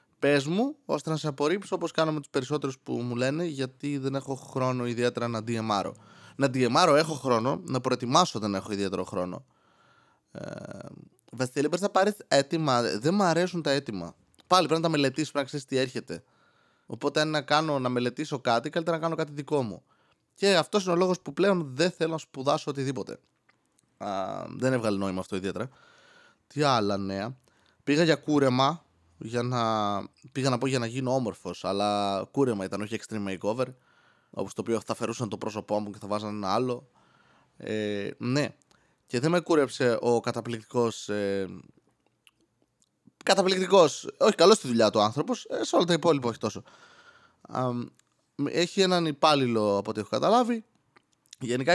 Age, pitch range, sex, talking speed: 20-39, 110-155 Hz, male, 175 wpm